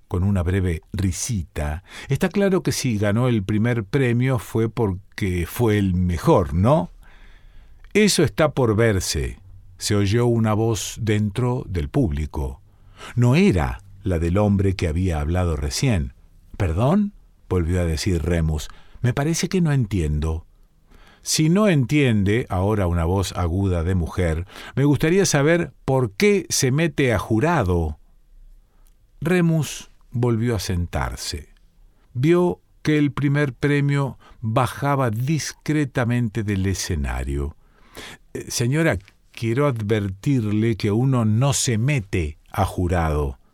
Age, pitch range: 50-69, 85-125 Hz